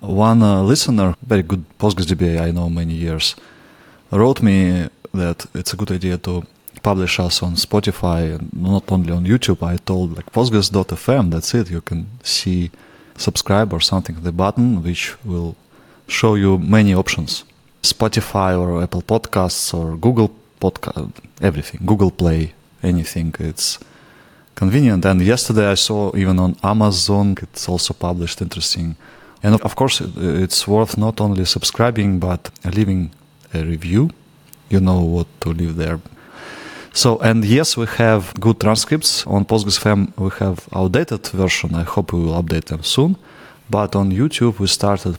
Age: 30-49